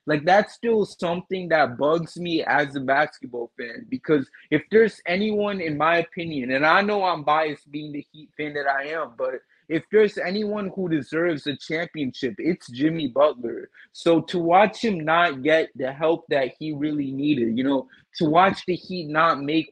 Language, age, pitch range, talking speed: English, 20-39, 150-180 Hz, 185 wpm